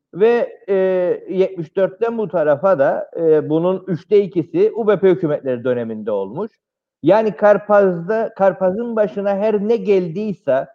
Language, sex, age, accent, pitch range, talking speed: Turkish, male, 50-69, native, 160-210 Hz, 115 wpm